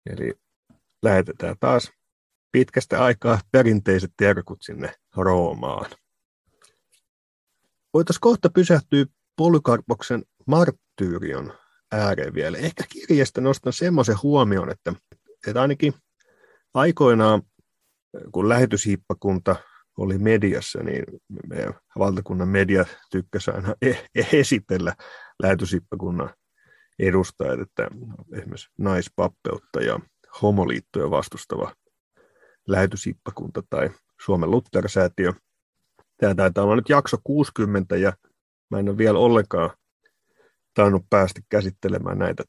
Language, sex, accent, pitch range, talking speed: Finnish, male, native, 95-130 Hz, 90 wpm